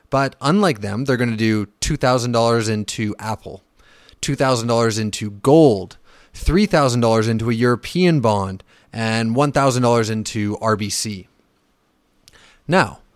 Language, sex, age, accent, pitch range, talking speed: English, male, 30-49, American, 110-140 Hz, 105 wpm